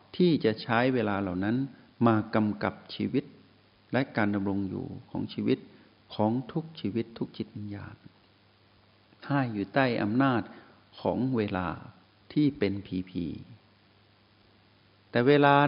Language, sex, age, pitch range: Thai, male, 60-79, 100-125 Hz